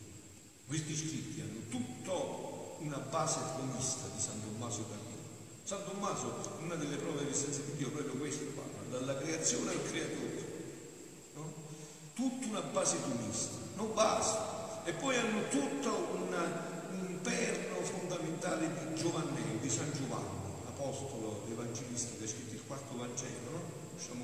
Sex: male